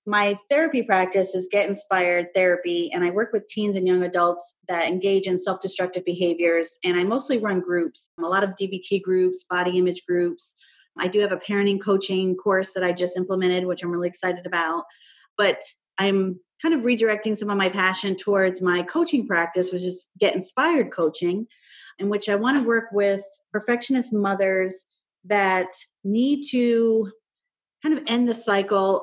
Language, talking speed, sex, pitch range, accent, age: English, 175 wpm, female, 175-205 Hz, American, 30-49